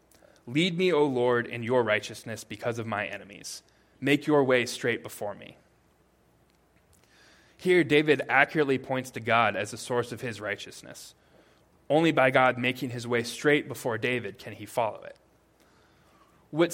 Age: 20-39